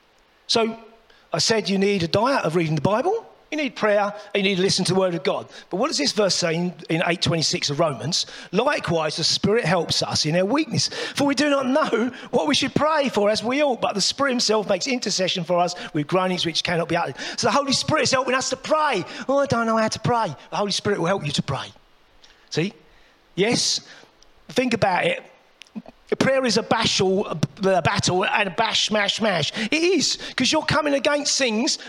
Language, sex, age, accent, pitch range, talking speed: English, male, 40-59, British, 190-275 Hz, 215 wpm